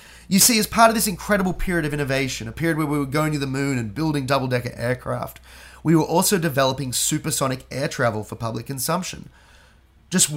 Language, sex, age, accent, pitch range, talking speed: English, male, 30-49, Australian, 125-180 Hz, 195 wpm